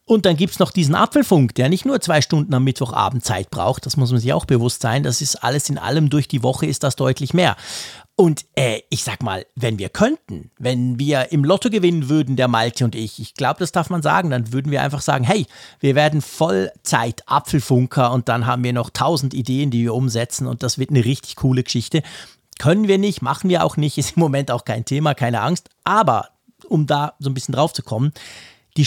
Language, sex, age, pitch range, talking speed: German, male, 50-69, 125-165 Hz, 230 wpm